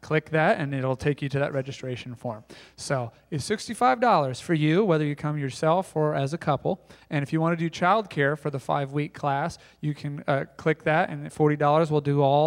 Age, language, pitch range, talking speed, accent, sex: 30-49, English, 140-170 Hz, 215 wpm, American, male